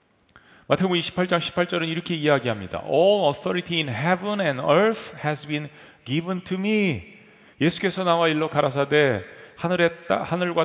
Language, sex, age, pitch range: Korean, male, 40-59, 145-180 Hz